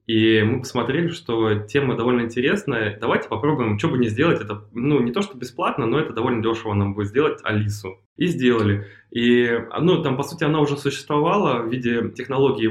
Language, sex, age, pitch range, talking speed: Russian, male, 20-39, 110-135 Hz, 185 wpm